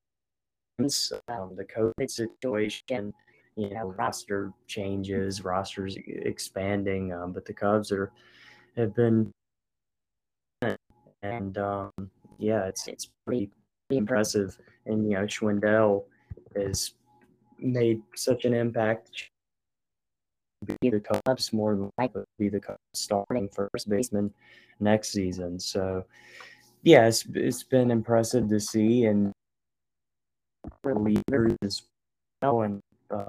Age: 20-39